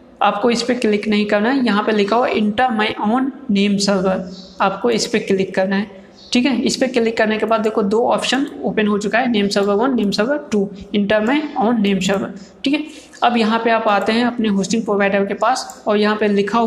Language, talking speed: Hindi, 235 wpm